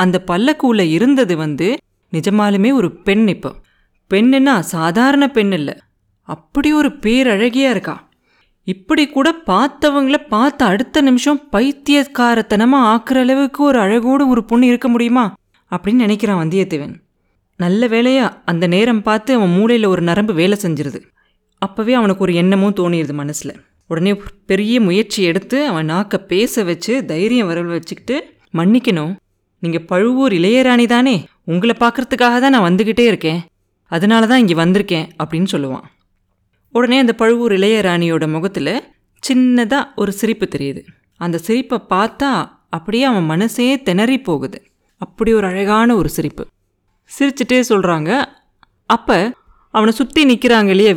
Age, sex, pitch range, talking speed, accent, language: 20-39, female, 175-245 Hz, 125 wpm, native, Tamil